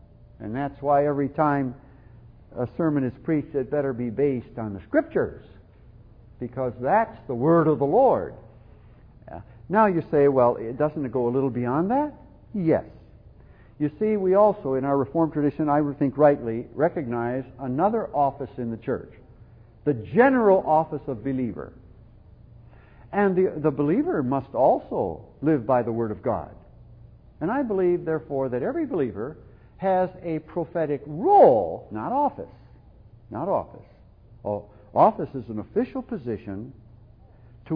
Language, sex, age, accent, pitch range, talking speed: English, male, 60-79, American, 115-160 Hz, 150 wpm